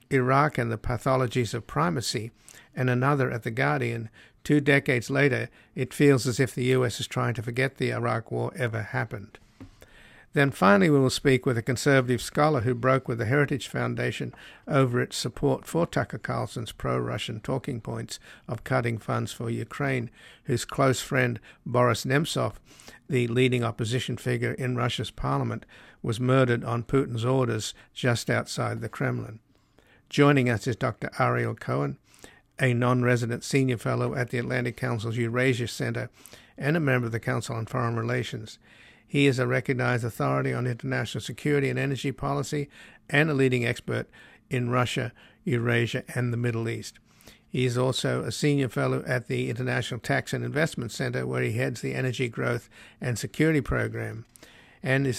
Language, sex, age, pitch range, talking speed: English, male, 50-69, 120-135 Hz, 165 wpm